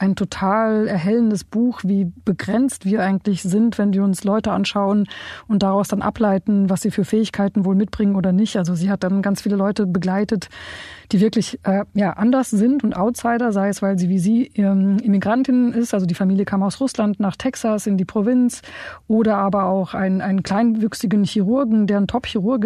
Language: German